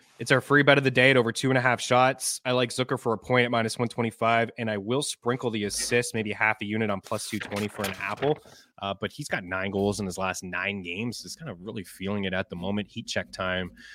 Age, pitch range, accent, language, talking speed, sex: 20-39, 100-125 Hz, American, English, 275 wpm, male